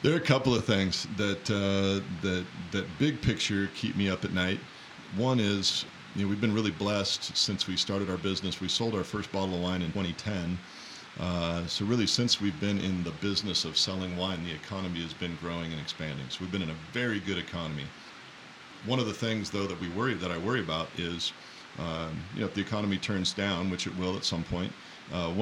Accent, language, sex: American, English, male